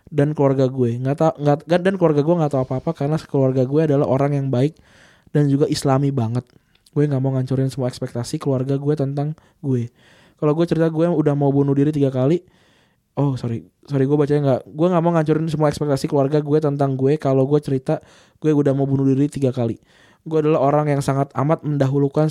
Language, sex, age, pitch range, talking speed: Indonesian, male, 20-39, 135-150 Hz, 205 wpm